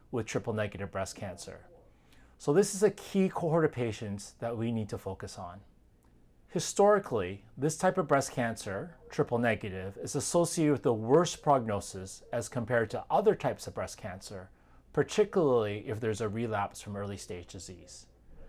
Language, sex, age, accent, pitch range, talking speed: English, male, 30-49, American, 100-150 Hz, 160 wpm